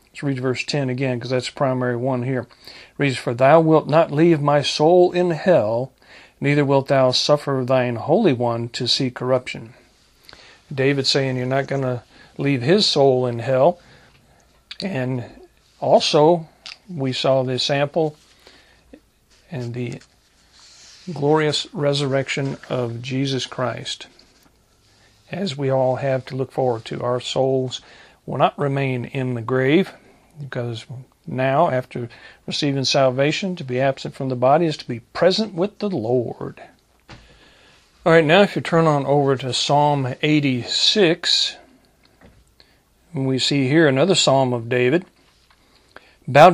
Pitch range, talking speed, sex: 125-150 Hz, 140 wpm, male